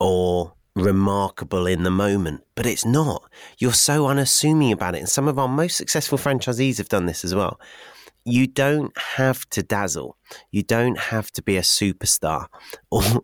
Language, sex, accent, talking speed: English, male, British, 170 wpm